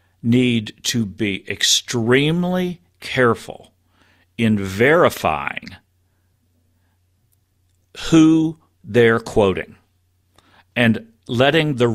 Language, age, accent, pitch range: English, 50-69, American, 95-125 Hz